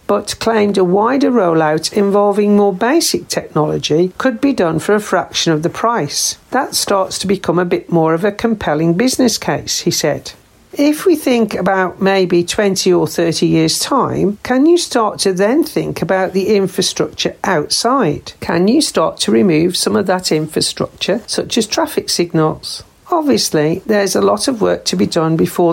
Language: English